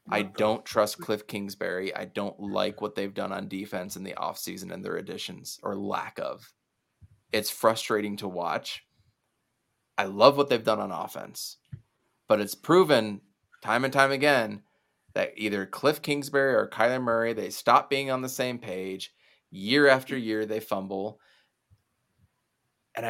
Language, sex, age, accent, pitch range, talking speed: English, male, 20-39, American, 105-135 Hz, 155 wpm